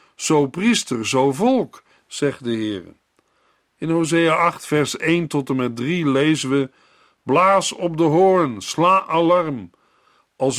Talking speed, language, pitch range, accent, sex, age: 140 wpm, Dutch, 130-180 Hz, Dutch, male, 50-69